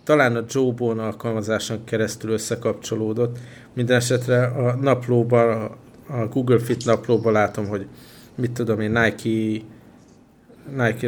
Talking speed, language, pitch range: 115 wpm, Hungarian, 110-120 Hz